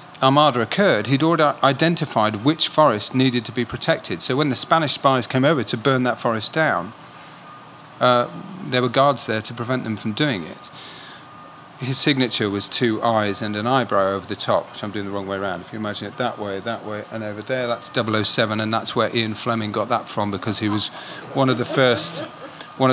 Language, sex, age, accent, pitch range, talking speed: English, male, 40-59, British, 110-135 Hz, 205 wpm